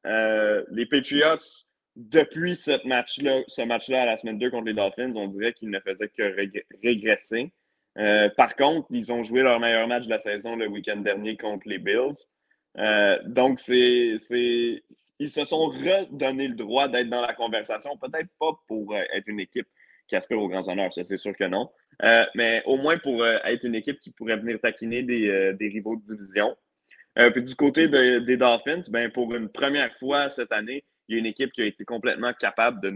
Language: French